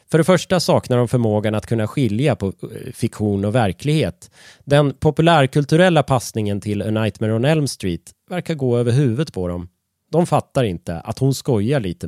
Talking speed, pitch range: 175 wpm, 100-150 Hz